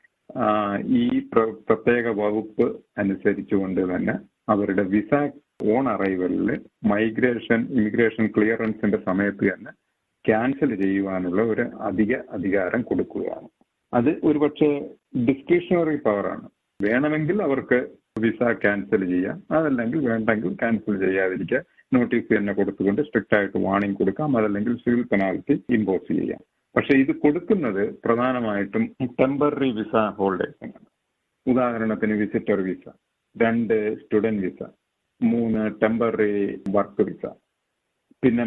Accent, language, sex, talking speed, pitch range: native, Malayalam, male, 100 wpm, 100-120 Hz